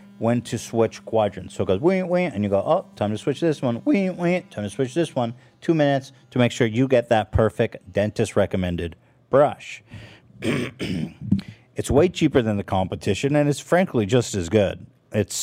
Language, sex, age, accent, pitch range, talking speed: English, male, 50-69, American, 100-130 Hz, 175 wpm